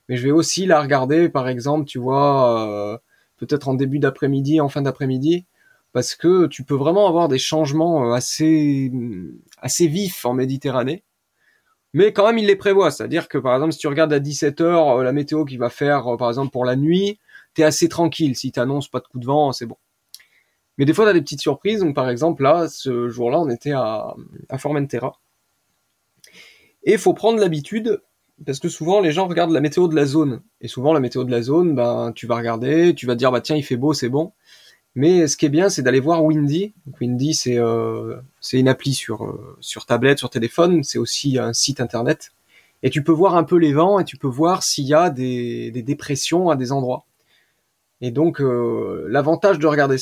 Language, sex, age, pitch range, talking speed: French, male, 20-39, 130-165 Hz, 210 wpm